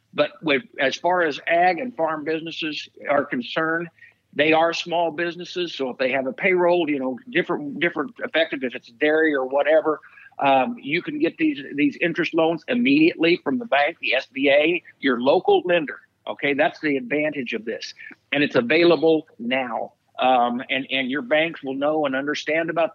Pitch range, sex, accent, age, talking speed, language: 140-170 Hz, male, American, 60-79, 180 wpm, English